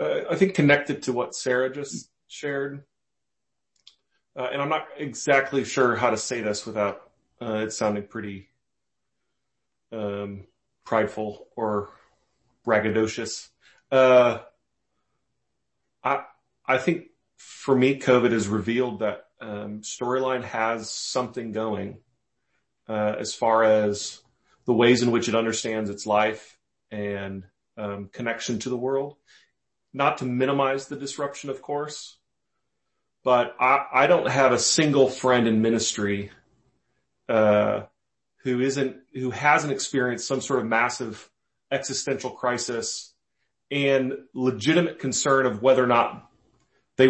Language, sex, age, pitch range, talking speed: English, male, 30-49, 110-135 Hz, 125 wpm